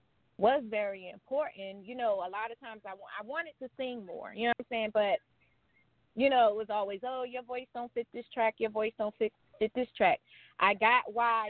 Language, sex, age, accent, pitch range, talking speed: English, female, 20-39, American, 200-255 Hz, 230 wpm